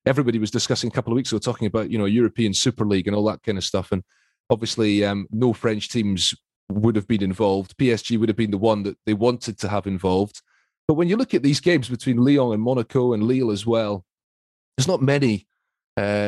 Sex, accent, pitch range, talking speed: male, British, 100-120 Hz, 230 wpm